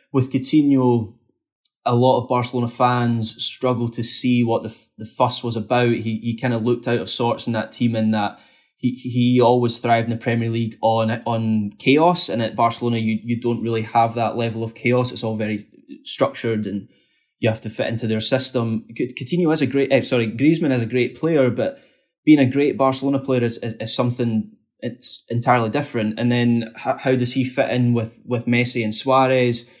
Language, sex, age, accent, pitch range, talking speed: English, male, 20-39, British, 115-130 Hz, 200 wpm